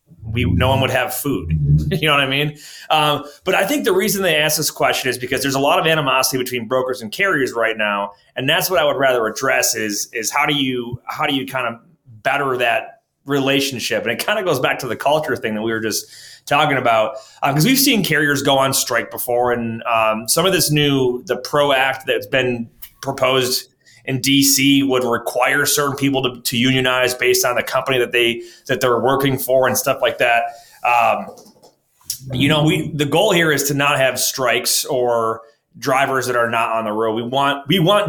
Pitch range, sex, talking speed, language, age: 120-145 Hz, male, 215 wpm, English, 30-49